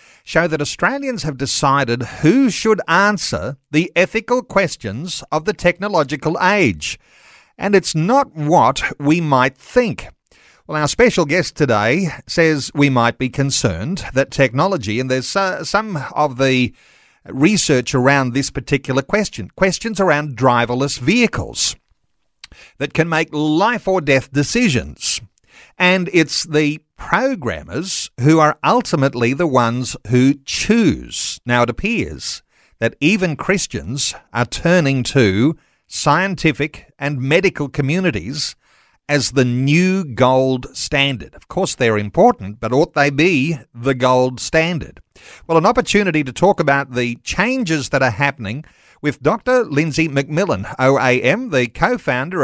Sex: male